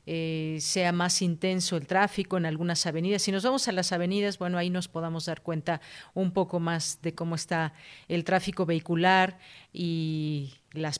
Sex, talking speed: female, 175 wpm